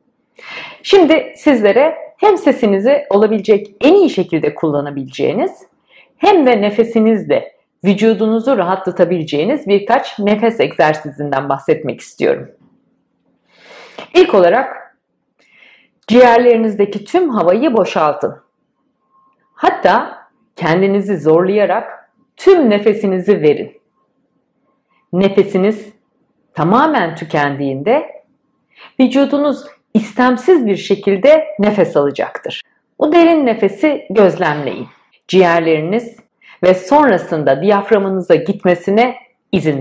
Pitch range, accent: 190-275 Hz, native